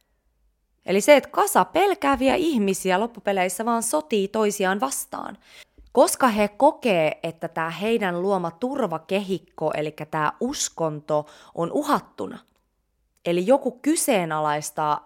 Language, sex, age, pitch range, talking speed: Finnish, female, 20-39, 160-245 Hz, 110 wpm